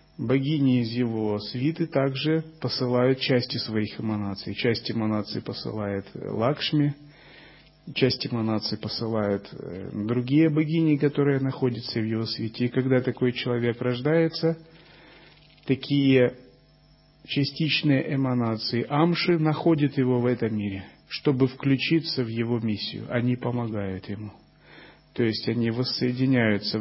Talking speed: 110 wpm